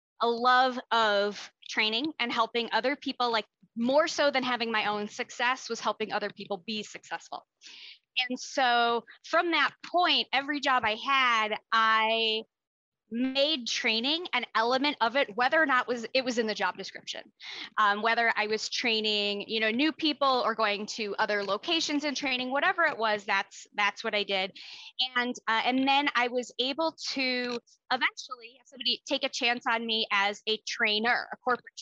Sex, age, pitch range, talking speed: female, 20-39, 215-260 Hz, 175 wpm